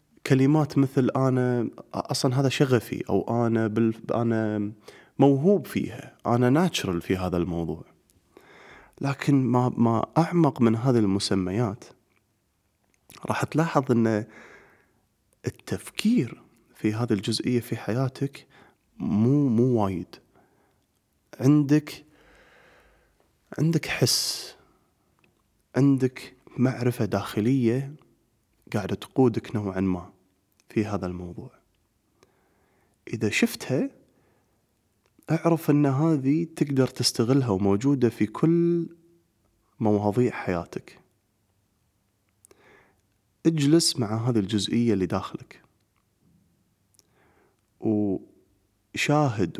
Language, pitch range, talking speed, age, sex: Arabic, 105-140 Hz, 80 wpm, 30-49, male